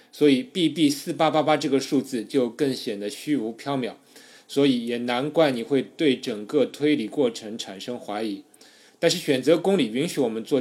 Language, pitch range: Chinese, 115-150 Hz